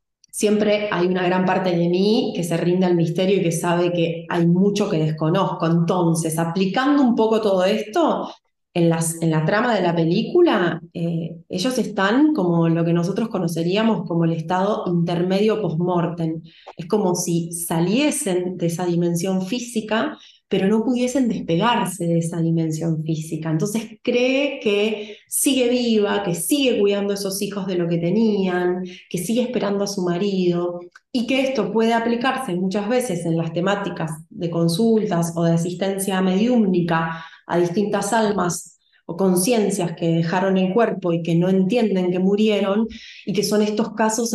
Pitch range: 170-210 Hz